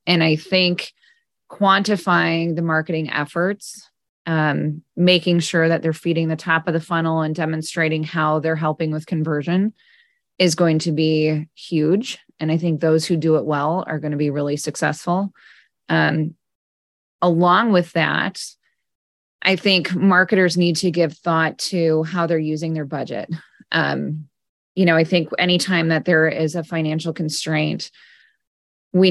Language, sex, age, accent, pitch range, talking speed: English, female, 20-39, American, 155-180 Hz, 155 wpm